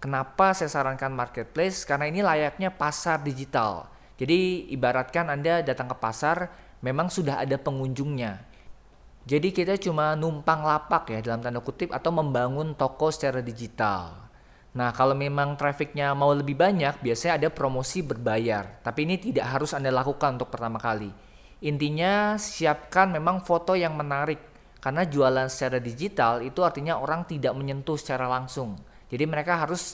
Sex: male